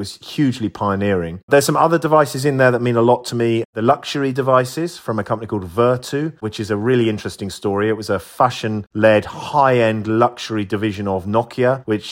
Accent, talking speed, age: British, 195 wpm, 30-49